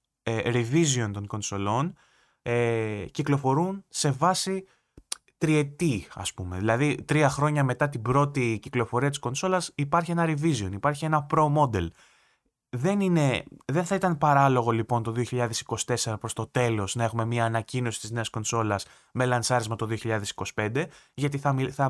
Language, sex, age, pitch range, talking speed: Greek, male, 20-39, 115-150 Hz, 135 wpm